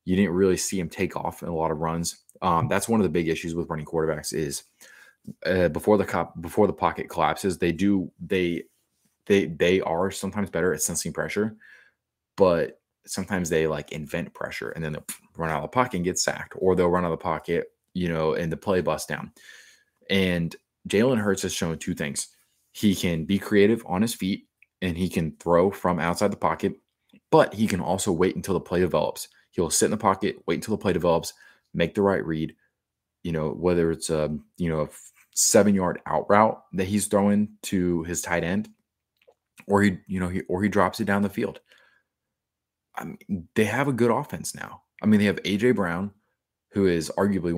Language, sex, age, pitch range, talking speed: English, male, 20-39, 80-100 Hz, 210 wpm